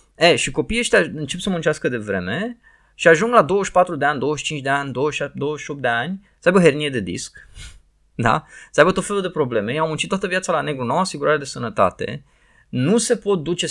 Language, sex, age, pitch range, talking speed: Romanian, male, 20-39, 140-210 Hz, 220 wpm